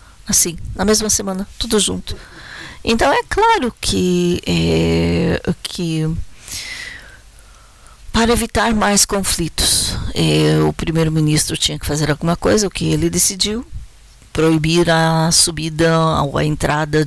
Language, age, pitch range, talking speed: Portuguese, 40-59, 145-190 Hz, 115 wpm